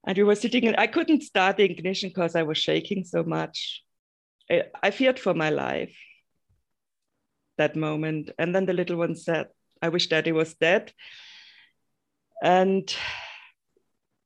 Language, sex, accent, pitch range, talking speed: English, female, German, 175-230 Hz, 150 wpm